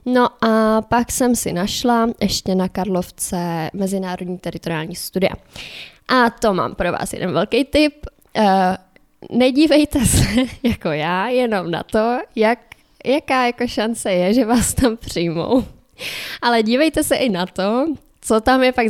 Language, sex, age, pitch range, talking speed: Czech, female, 20-39, 190-245 Hz, 140 wpm